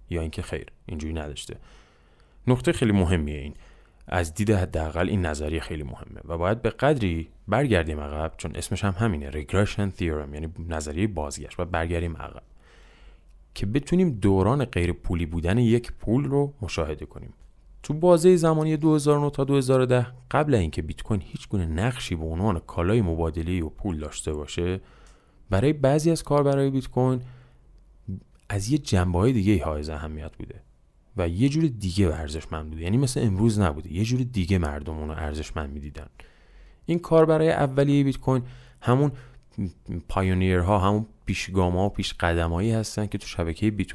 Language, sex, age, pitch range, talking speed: Persian, male, 30-49, 80-115 Hz, 160 wpm